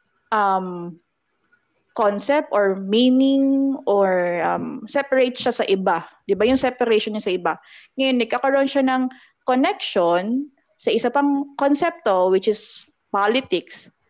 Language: Filipino